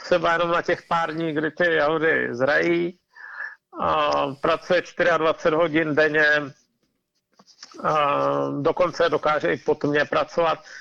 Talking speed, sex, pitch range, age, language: 105 wpm, male, 150-185 Hz, 50-69, Czech